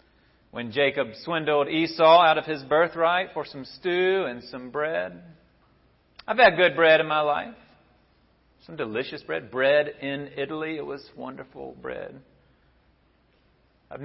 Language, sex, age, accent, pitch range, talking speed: English, male, 40-59, American, 120-155 Hz, 135 wpm